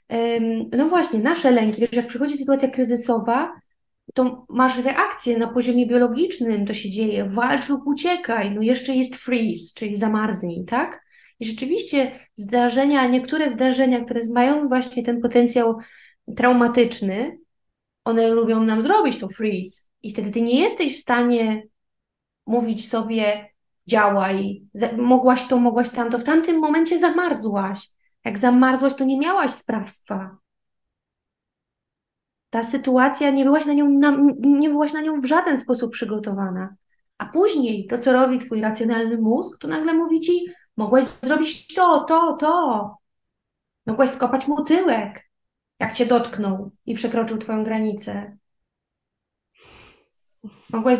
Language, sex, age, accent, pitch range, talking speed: Polish, female, 20-39, native, 225-285 Hz, 125 wpm